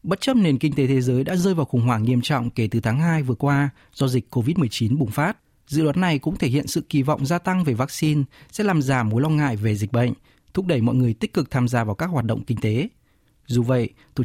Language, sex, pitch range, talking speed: Vietnamese, male, 120-155 Hz, 270 wpm